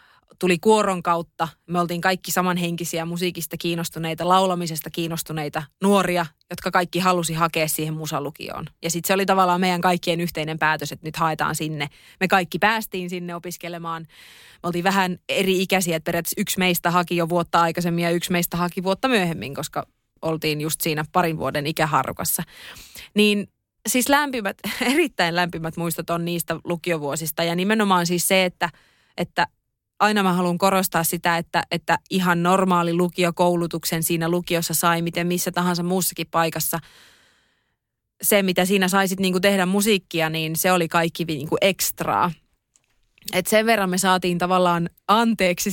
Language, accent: Finnish, native